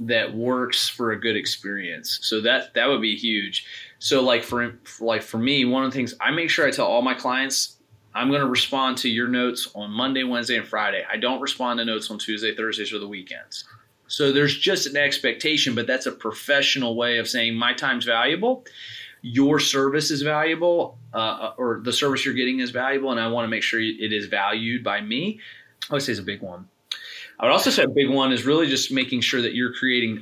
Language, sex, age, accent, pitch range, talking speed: English, male, 30-49, American, 110-135 Hz, 220 wpm